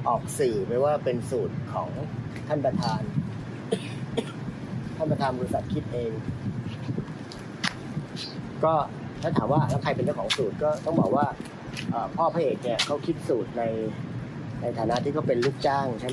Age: 30-49